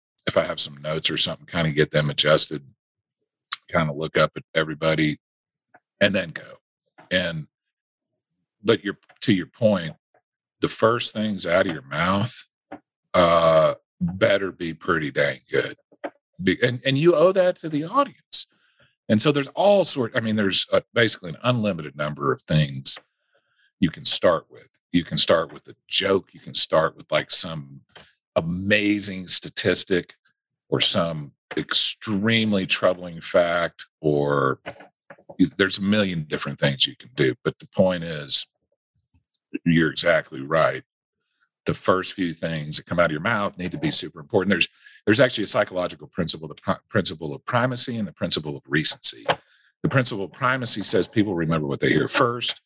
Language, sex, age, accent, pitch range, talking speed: English, male, 50-69, American, 75-110 Hz, 165 wpm